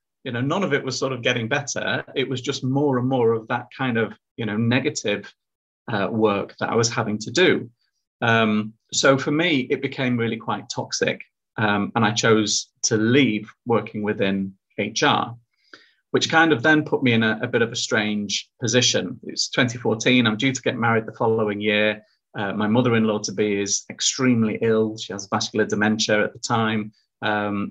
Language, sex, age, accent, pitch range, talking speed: English, male, 30-49, British, 105-125 Hz, 190 wpm